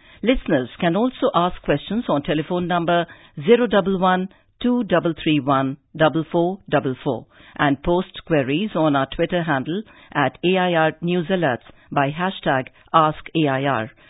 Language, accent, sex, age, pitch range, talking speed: English, Indian, female, 50-69, 150-190 Hz, 95 wpm